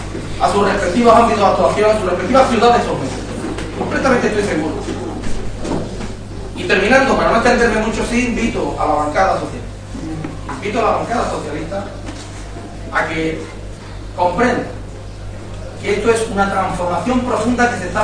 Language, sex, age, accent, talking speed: English, male, 40-59, Spanish, 145 wpm